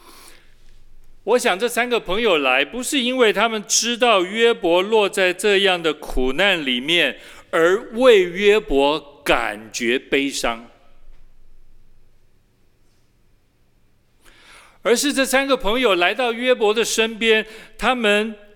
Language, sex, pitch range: Chinese, male, 175-245 Hz